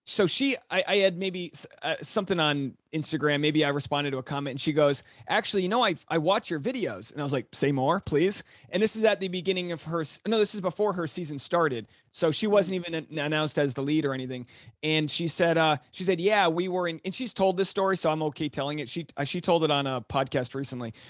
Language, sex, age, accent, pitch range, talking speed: English, male, 30-49, American, 145-190 Hz, 250 wpm